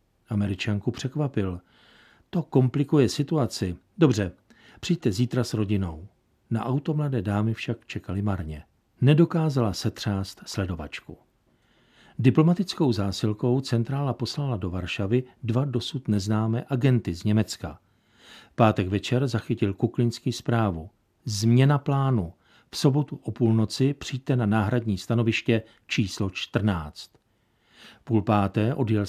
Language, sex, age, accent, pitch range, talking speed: Czech, male, 50-69, native, 100-125 Hz, 105 wpm